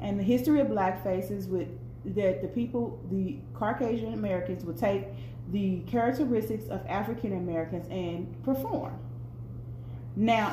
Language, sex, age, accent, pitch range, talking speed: English, female, 30-49, American, 180-230 Hz, 130 wpm